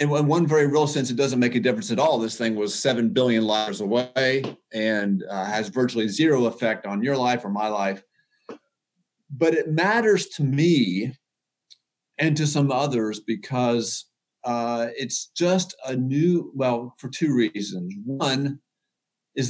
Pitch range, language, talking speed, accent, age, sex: 115-155 Hz, English, 165 wpm, American, 40-59, male